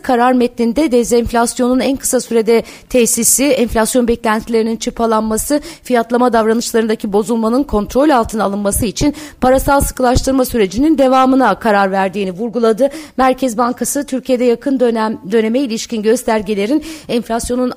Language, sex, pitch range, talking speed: Turkish, female, 220-260 Hz, 110 wpm